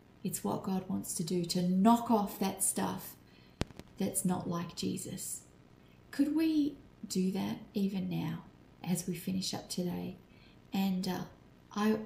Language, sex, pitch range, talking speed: English, female, 180-220 Hz, 145 wpm